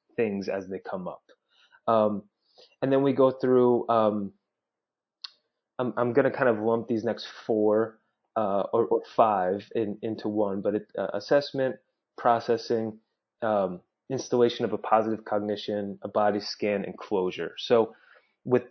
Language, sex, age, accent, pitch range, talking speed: English, male, 30-49, American, 105-120 Hz, 150 wpm